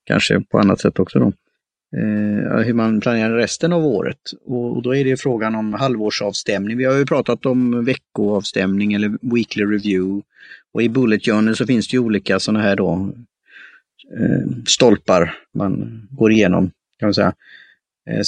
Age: 30-49